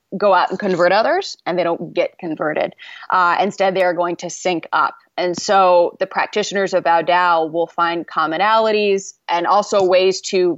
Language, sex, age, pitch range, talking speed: English, female, 20-39, 170-195 Hz, 175 wpm